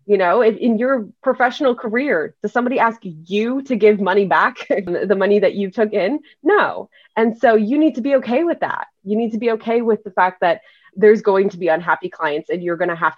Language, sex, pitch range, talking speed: English, female, 180-225 Hz, 230 wpm